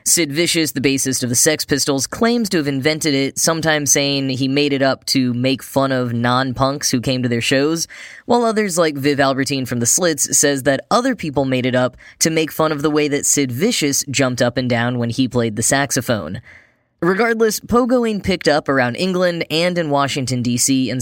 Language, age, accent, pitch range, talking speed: English, 10-29, American, 125-165 Hz, 210 wpm